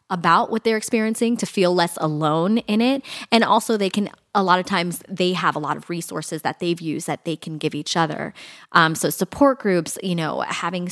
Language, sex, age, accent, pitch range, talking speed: English, female, 20-39, American, 165-200 Hz, 220 wpm